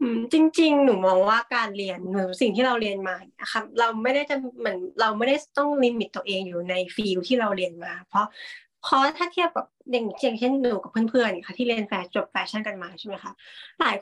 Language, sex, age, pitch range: Thai, female, 20-39, 195-255 Hz